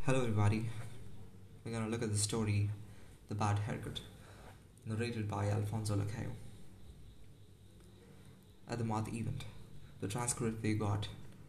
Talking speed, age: 125 wpm, 20-39